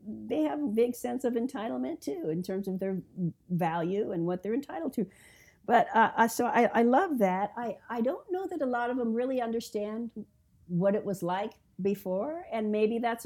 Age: 50-69